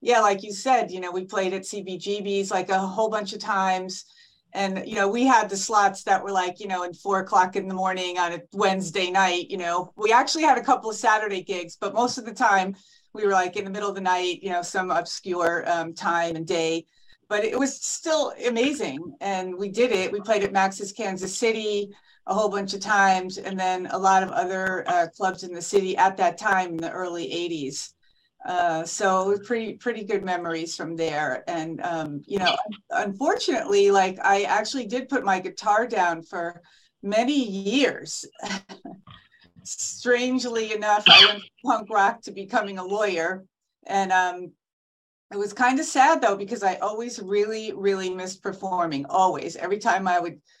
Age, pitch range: 40-59, 180-215 Hz